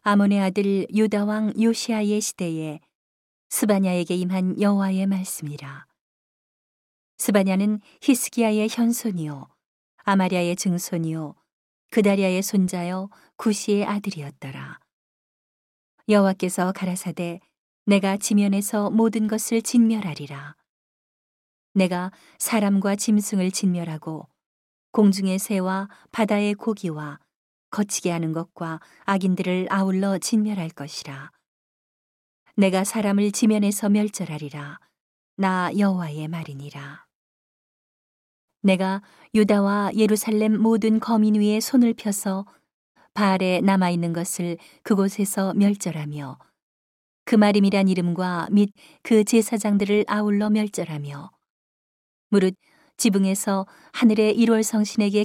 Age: 40-59